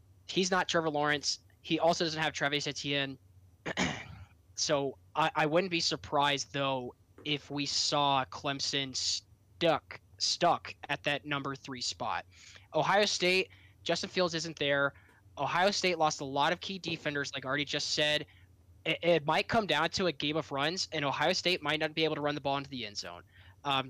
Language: English